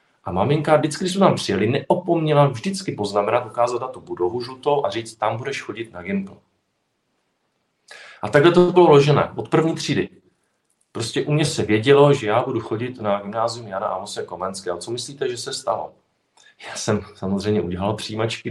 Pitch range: 100-145 Hz